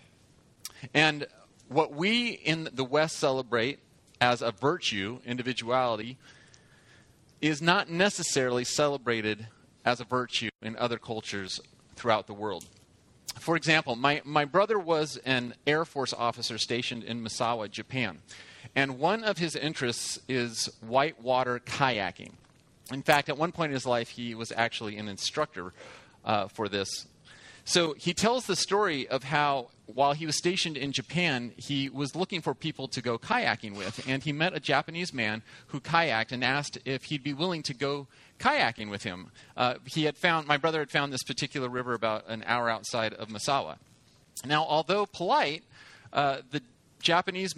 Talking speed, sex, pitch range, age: 160 wpm, male, 120-155 Hz, 30-49